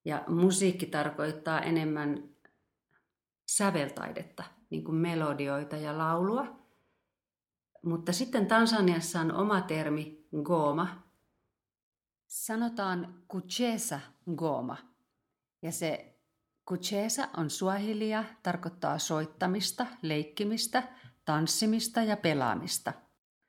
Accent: native